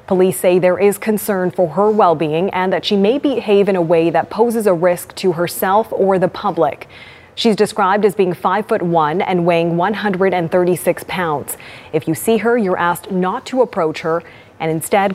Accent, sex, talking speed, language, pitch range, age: American, female, 190 wpm, English, 175-220 Hz, 30-49